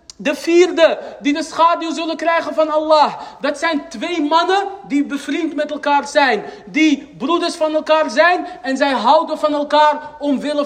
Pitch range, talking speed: 285-330 Hz, 165 wpm